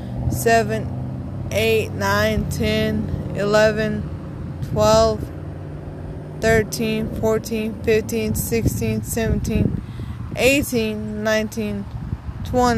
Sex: female